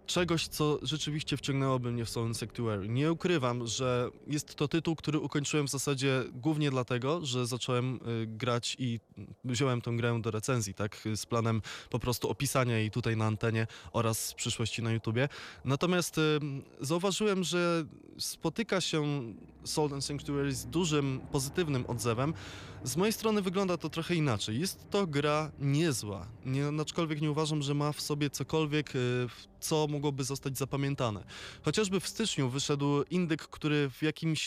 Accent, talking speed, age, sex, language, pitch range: native, 155 wpm, 20-39, male, Polish, 125-155 Hz